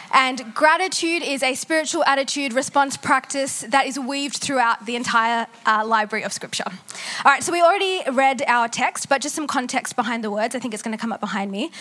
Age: 20-39